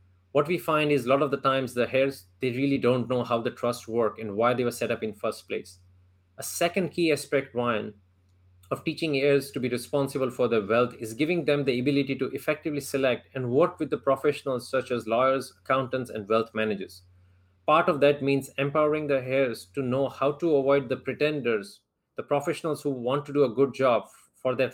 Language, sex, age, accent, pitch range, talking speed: English, male, 30-49, Indian, 110-140 Hz, 210 wpm